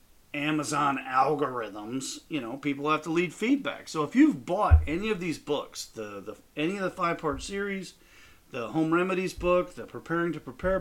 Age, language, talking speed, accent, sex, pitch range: 40-59, English, 180 wpm, American, male, 120-185 Hz